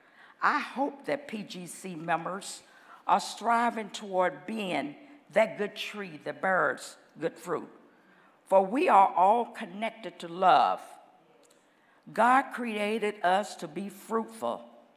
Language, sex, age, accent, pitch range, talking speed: English, female, 50-69, American, 180-245 Hz, 115 wpm